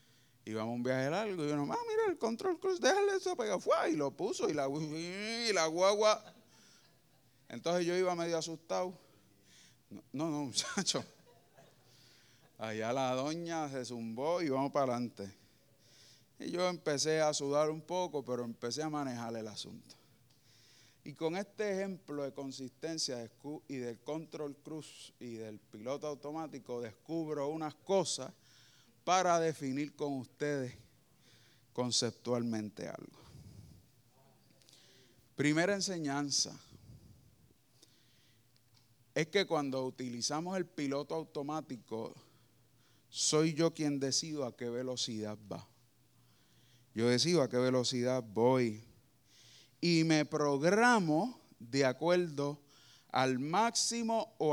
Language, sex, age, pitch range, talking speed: Spanish, male, 30-49, 120-160 Hz, 120 wpm